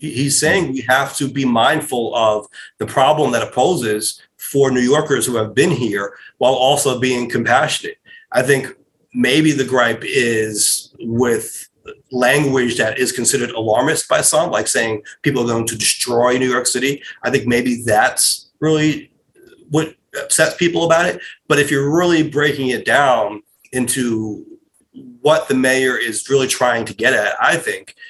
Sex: male